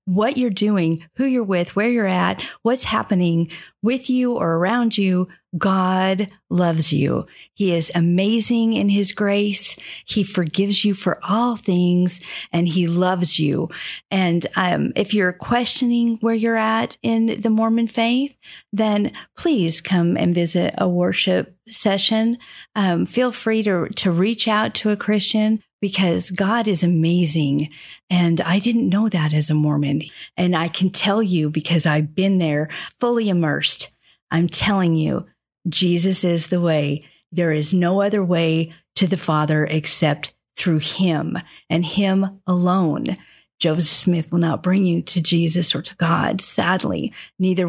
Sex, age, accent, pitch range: female, 40-59, American, 170-205 Hz